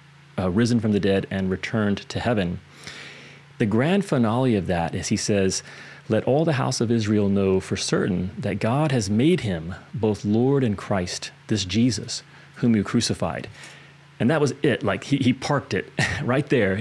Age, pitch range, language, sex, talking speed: 30-49, 100-130 Hz, English, male, 180 wpm